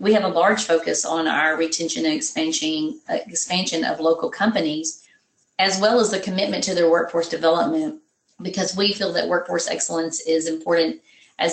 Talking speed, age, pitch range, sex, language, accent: 165 wpm, 40-59, 160-190 Hz, female, English, American